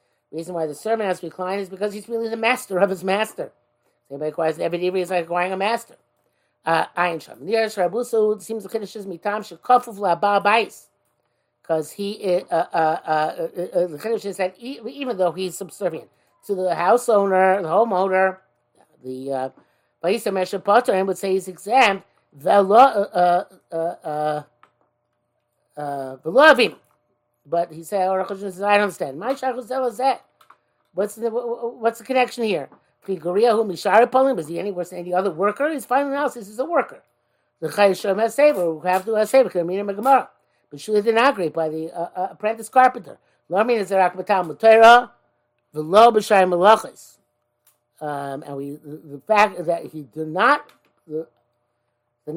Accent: American